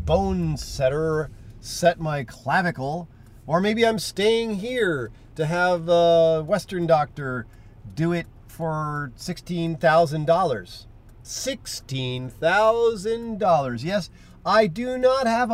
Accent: American